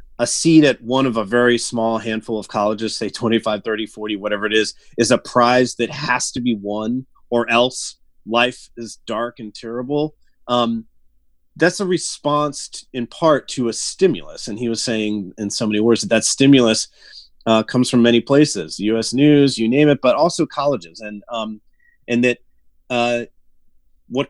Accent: American